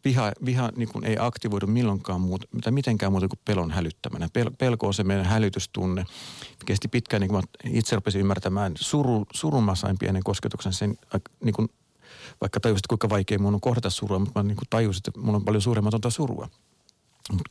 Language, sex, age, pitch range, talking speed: Finnish, male, 50-69, 95-115 Hz, 185 wpm